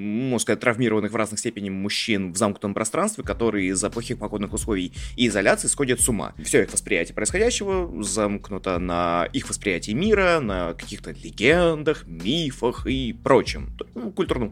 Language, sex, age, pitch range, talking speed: Russian, male, 20-39, 100-125 Hz, 150 wpm